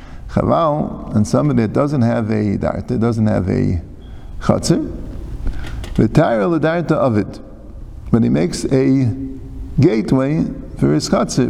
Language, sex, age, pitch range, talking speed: English, male, 50-69, 105-125 Hz, 135 wpm